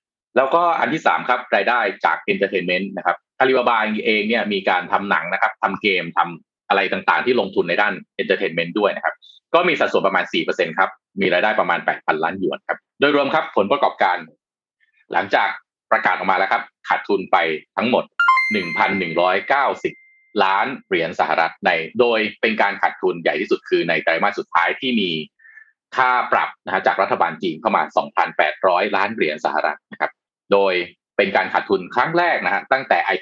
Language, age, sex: Thai, 30-49, male